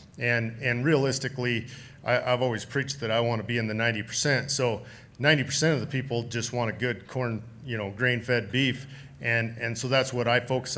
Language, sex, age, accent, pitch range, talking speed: English, male, 40-59, American, 115-130 Hz, 215 wpm